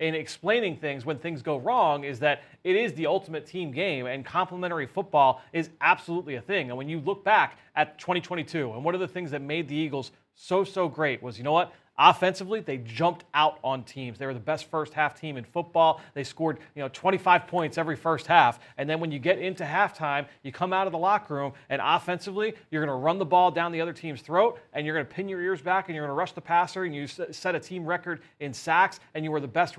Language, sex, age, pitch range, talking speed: English, male, 30-49, 145-180 Hz, 250 wpm